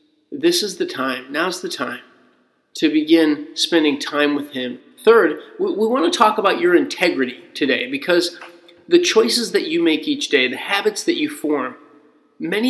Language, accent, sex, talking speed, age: English, American, male, 170 wpm, 30-49